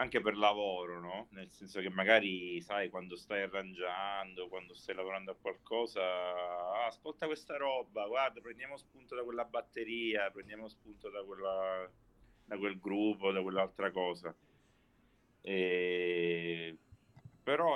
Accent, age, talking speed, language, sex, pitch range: native, 30-49, 130 wpm, Italian, male, 90-105 Hz